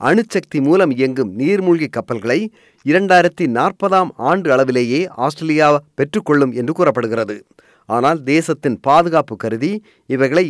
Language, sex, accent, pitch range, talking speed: Tamil, male, native, 105-160 Hz, 105 wpm